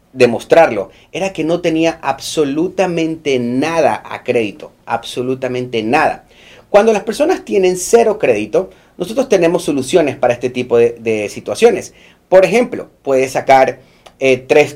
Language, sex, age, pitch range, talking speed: Spanish, male, 30-49, 130-190 Hz, 130 wpm